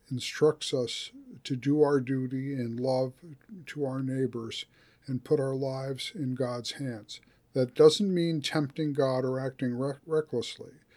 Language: English